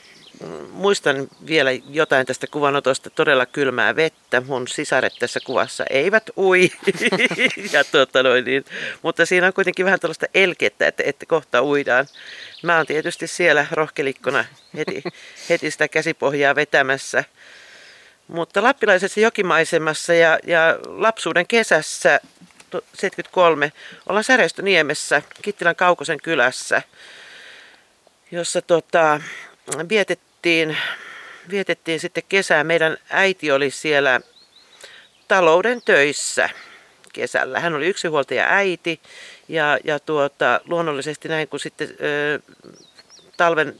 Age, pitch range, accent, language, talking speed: 40-59, 150-180 Hz, native, Finnish, 105 wpm